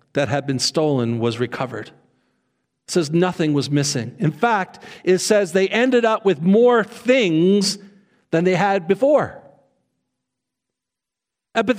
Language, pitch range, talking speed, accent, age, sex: English, 185-255 Hz, 130 wpm, American, 50-69, male